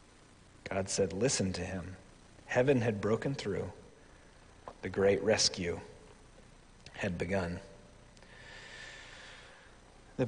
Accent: American